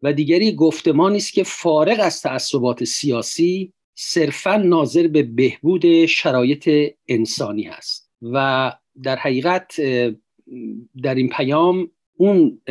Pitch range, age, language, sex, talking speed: 125-175 Hz, 50-69, Persian, male, 110 wpm